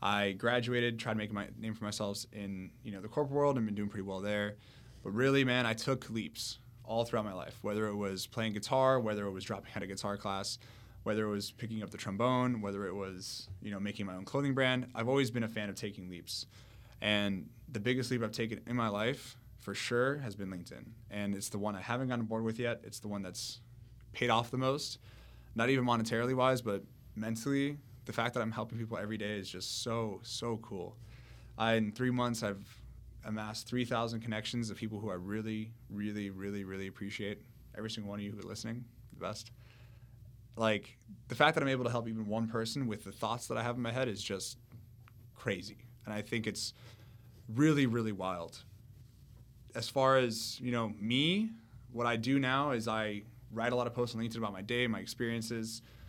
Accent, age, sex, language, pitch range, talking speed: American, 20-39, male, English, 105-120 Hz, 215 wpm